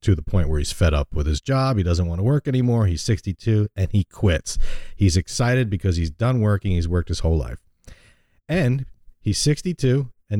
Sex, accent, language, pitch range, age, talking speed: male, American, English, 90-120 Hz, 40-59, 210 wpm